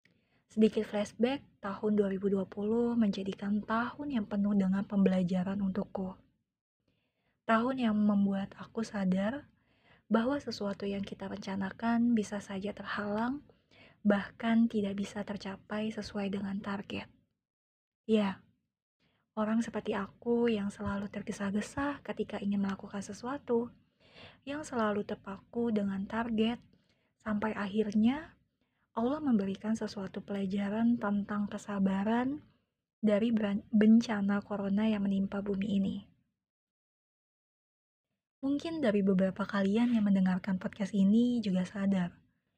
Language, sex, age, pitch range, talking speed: Indonesian, female, 20-39, 195-225 Hz, 100 wpm